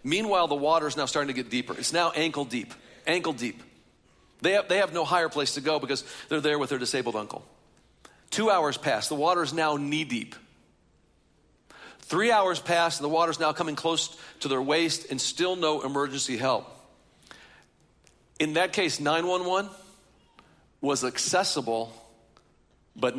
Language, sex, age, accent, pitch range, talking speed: English, male, 50-69, American, 140-180 Hz, 165 wpm